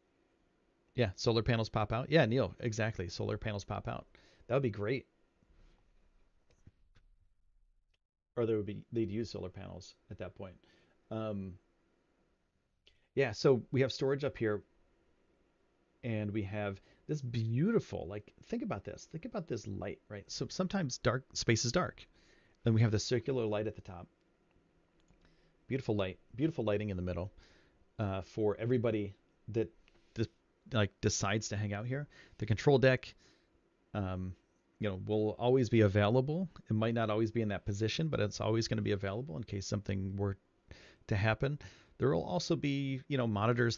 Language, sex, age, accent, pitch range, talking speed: English, male, 40-59, American, 100-120 Hz, 165 wpm